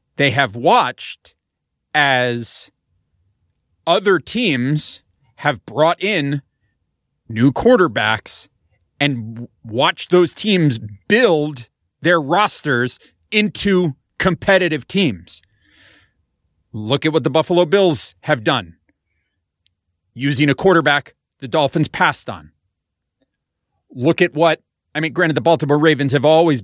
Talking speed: 105 wpm